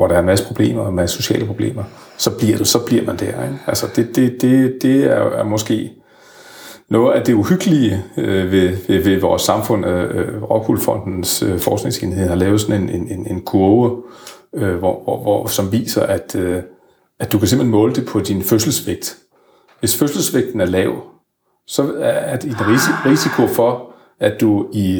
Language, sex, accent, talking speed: Danish, male, native, 190 wpm